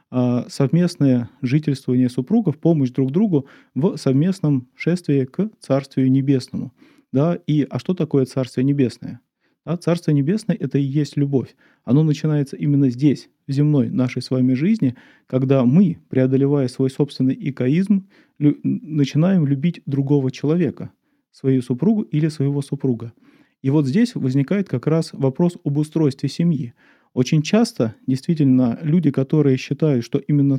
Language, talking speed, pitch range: Russian, 135 wpm, 130-160 Hz